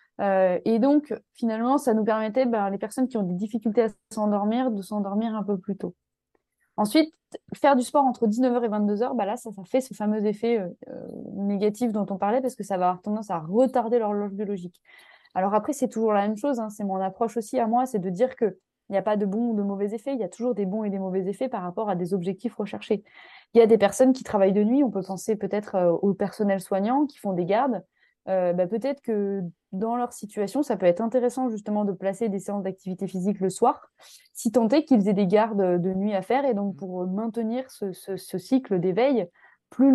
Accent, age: French, 20-39